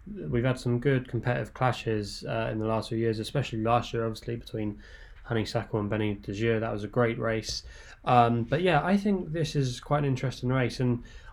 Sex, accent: male, British